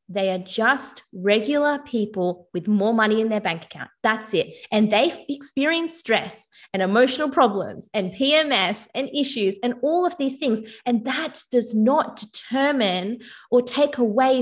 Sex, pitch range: female, 205-255 Hz